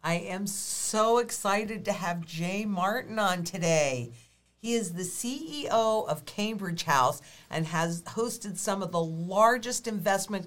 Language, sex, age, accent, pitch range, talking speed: English, female, 50-69, American, 155-215 Hz, 145 wpm